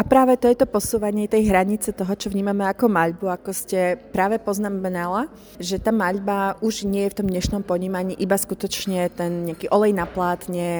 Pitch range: 175-205 Hz